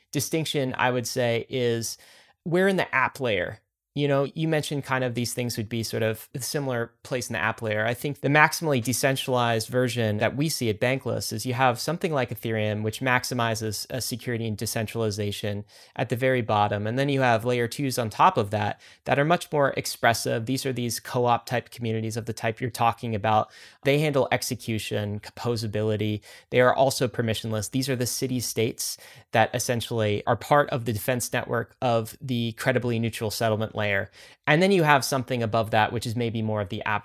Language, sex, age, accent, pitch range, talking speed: English, male, 30-49, American, 110-130 Hz, 200 wpm